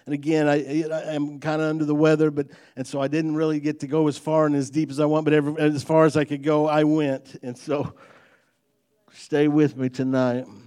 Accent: American